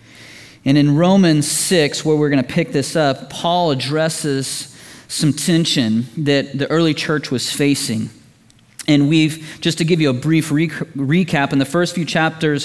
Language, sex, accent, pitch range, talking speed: English, male, American, 135-170 Hz, 165 wpm